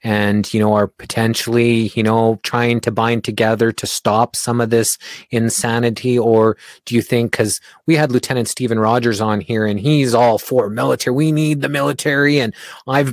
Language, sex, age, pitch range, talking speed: English, male, 20-39, 120-140 Hz, 185 wpm